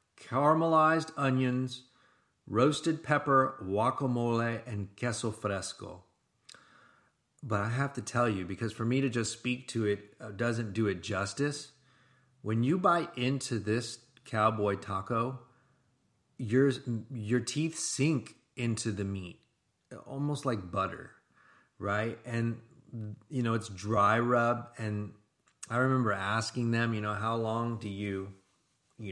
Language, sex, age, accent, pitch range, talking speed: English, male, 30-49, American, 105-130 Hz, 125 wpm